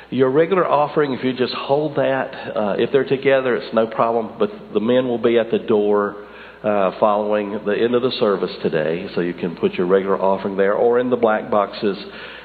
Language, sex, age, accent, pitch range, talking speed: English, male, 50-69, American, 105-145 Hz, 210 wpm